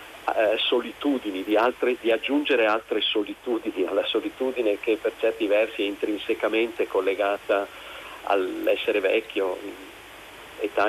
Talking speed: 100 wpm